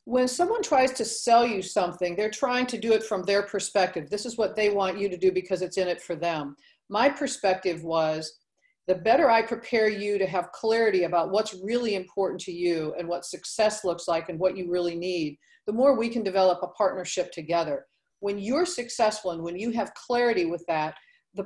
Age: 50-69